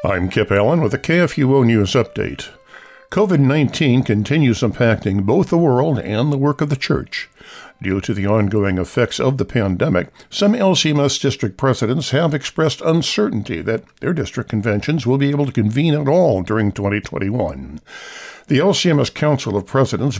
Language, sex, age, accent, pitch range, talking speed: English, male, 60-79, American, 105-145 Hz, 155 wpm